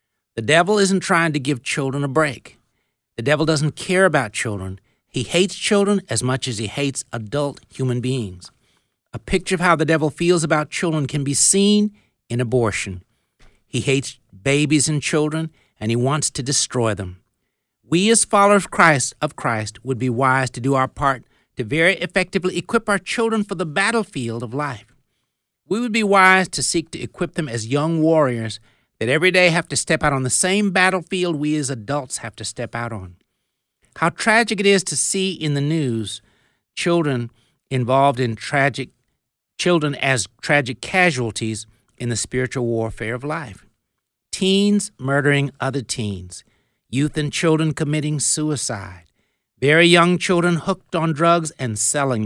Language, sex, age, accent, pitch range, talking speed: English, male, 60-79, American, 120-170 Hz, 165 wpm